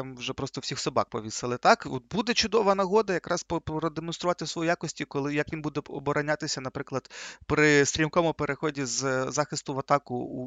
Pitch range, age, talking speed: 130-170 Hz, 30-49, 165 wpm